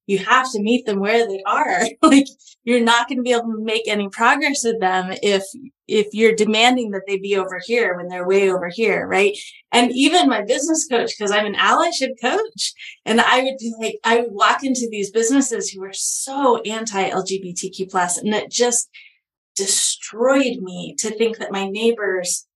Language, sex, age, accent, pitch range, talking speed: English, female, 20-39, American, 185-240 Hz, 190 wpm